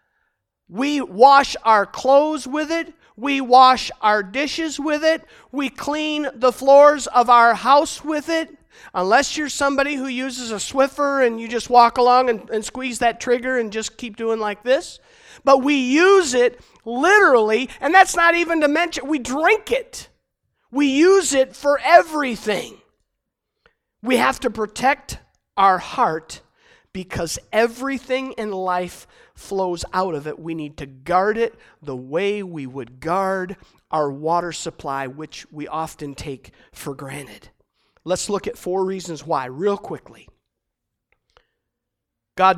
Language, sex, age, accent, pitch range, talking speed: English, male, 50-69, American, 180-275 Hz, 150 wpm